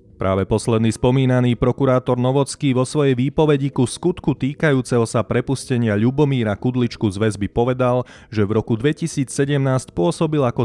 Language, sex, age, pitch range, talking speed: Slovak, male, 30-49, 110-140 Hz, 135 wpm